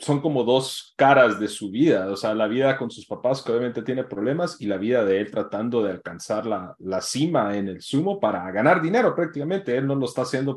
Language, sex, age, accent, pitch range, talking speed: Spanish, male, 30-49, Mexican, 105-145 Hz, 235 wpm